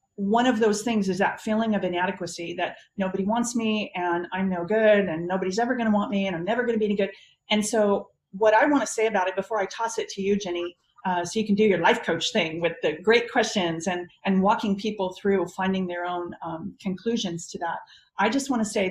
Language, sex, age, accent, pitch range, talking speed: English, female, 40-59, American, 190-235 Hz, 250 wpm